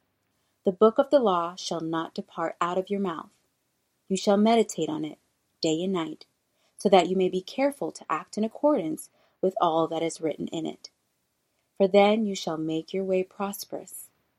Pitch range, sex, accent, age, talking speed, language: 165-205 Hz, female, American, 30-49, 190 wpm, English